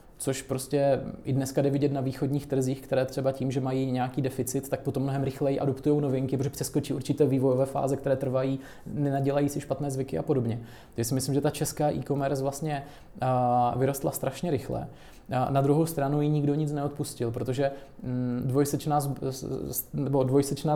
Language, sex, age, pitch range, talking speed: Czech, male, 20-39, 130-140 Hz, 160 wpm